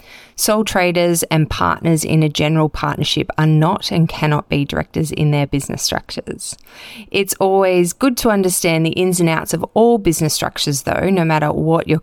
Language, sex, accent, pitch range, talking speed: English, female, Australian, 155-190 Hz, 180 wpm